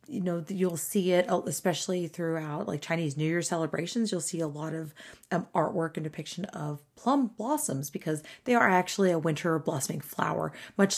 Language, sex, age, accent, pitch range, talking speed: English, female, 30-49, American, 160-210 Hz, 180 wpm